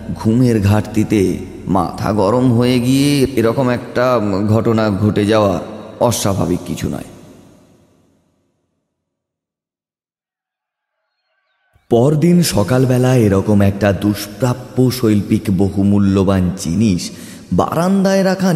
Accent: native